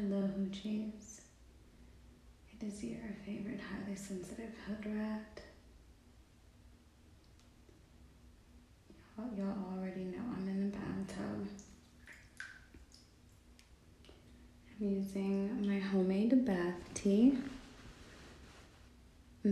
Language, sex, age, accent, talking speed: English, female, 20-39, American, 70 wpm